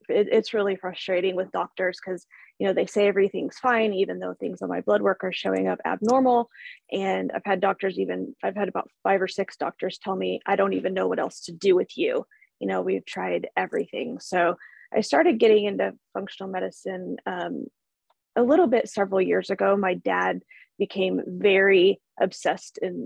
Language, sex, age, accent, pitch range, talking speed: English, female, 20-39, American, 175-210 Hz, 185 wpm